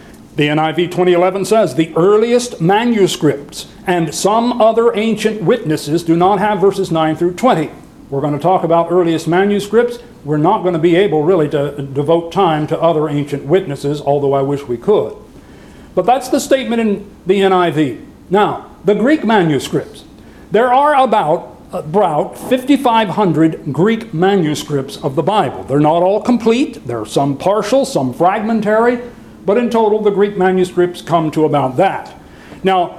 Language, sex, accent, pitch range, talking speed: English, male, American, 160-220 Hz, 160 wpm